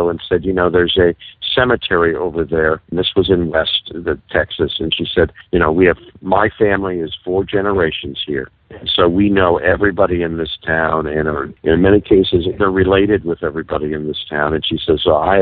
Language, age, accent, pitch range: English, 50-69, American, 80-110 Hz